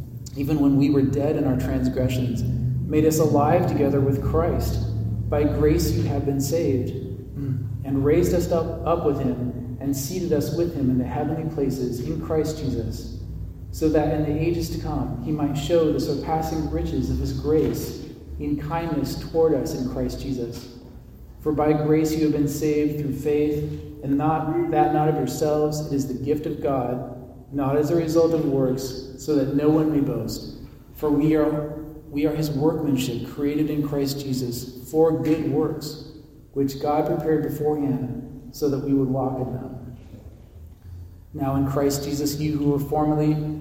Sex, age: male, 40-59